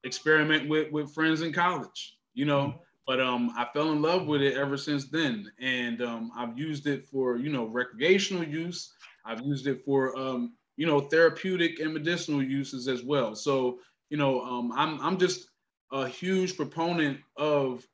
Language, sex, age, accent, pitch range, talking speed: English, male, 20-39, American, 130-165 Hz, 175 wpm